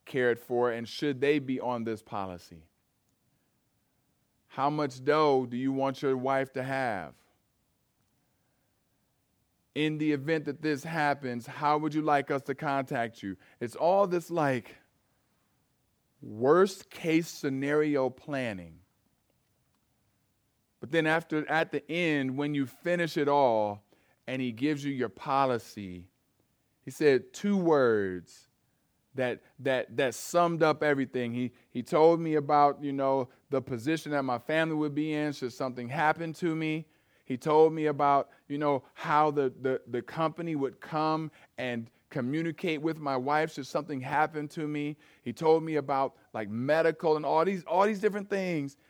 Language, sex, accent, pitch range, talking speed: English, male, American, 125-155 Hz, 150 wpm